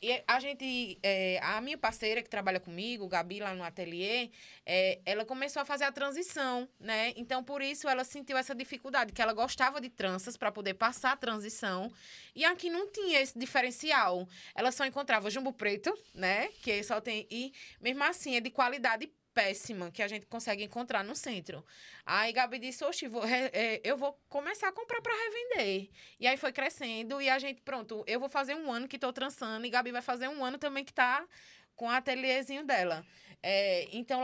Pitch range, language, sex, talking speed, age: 205-275 Hz, Portuguese, female, 200 wpm, 20-39